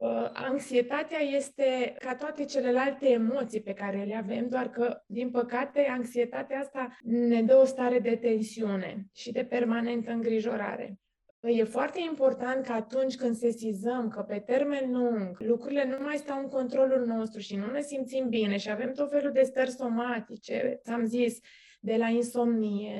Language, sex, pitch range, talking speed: Romanian, female, 225-255 Hz, 160 wpm